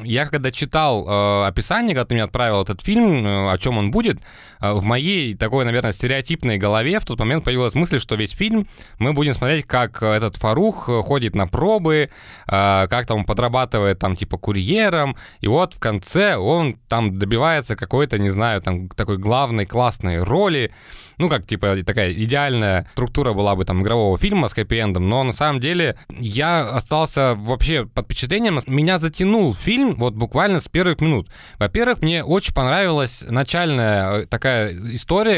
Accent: native